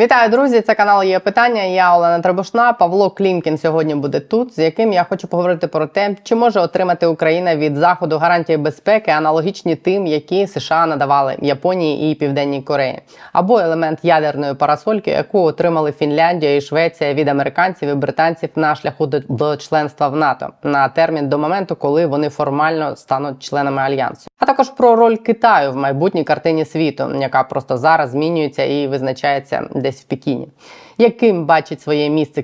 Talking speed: 165 wpm